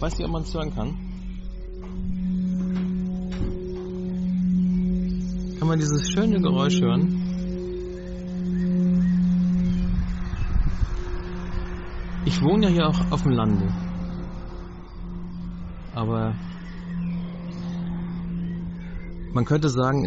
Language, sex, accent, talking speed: German, male, German, 80 wpm